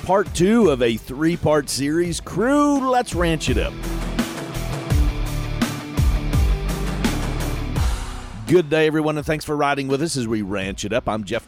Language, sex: English, male